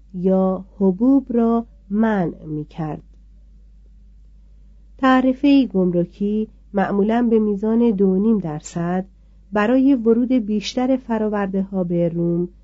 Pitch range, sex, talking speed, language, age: 175-225 Hz, female, 100 wpm, Persian, 40-59